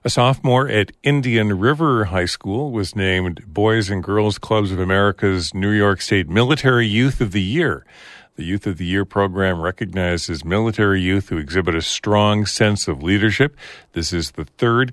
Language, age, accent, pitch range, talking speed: English, 50-69, American, 85-115 Hz, 175 wpm